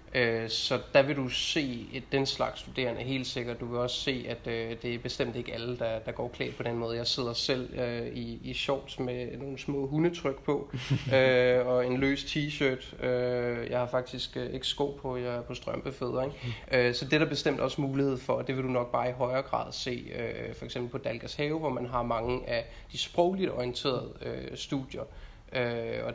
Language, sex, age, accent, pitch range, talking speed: Danish, male, 20-39, native, 120-130 Hz, 185 wpm